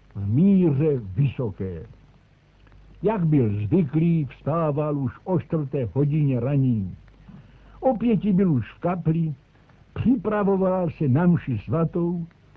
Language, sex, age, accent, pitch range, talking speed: Czech, male, 60-79, native, 130-180 Hz, 105 wpm